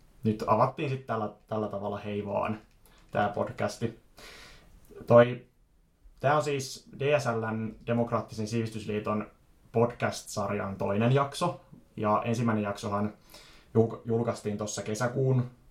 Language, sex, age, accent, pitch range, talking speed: Finnish, male, 20-39, native, 105-120 Hz, 95 wpm